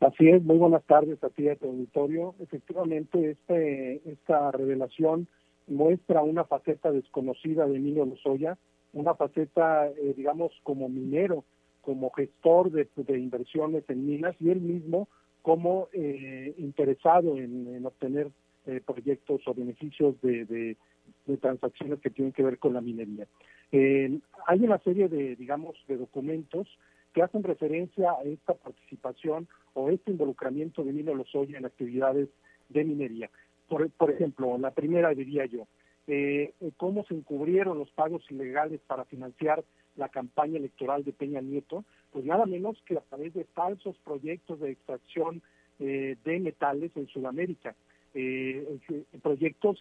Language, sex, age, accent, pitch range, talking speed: Spanish, male, 50-69, Mexican, 135-165 Hz, 145 wpm